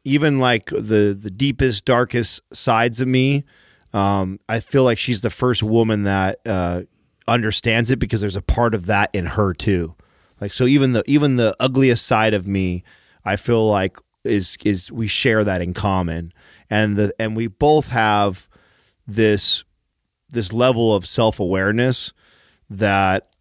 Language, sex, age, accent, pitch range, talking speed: English, male, 30-49, American, 95-115 Hz, 160 wpm